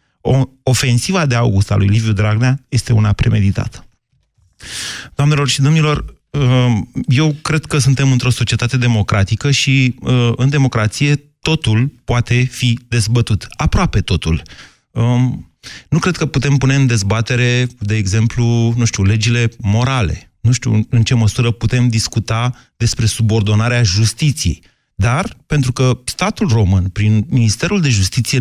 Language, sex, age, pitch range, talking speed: Romanian, male, 30-49, 105-130 Hz, 130 wpm